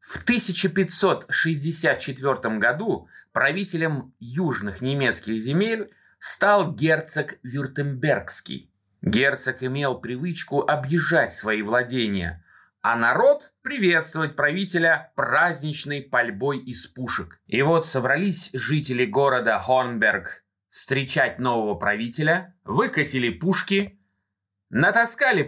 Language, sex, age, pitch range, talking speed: Russian, male, 20-39, 125-180 Hz, 85 wpm